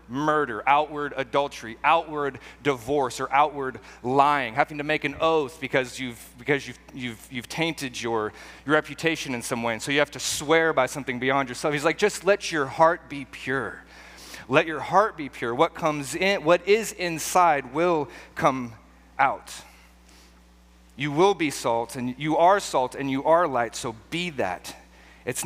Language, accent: English, American